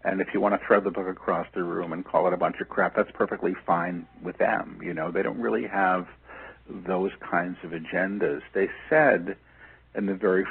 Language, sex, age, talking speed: English, male, 60-79, 215 wpm